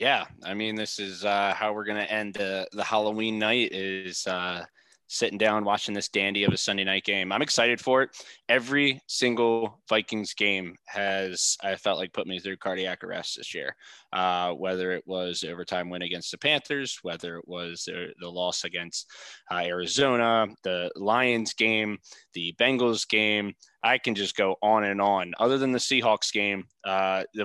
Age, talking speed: 20-39, 185 wpm